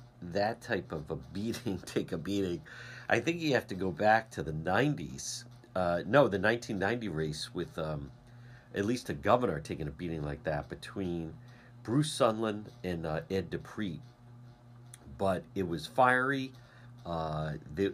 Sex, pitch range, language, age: male, 90-120 Hz, English, 50-69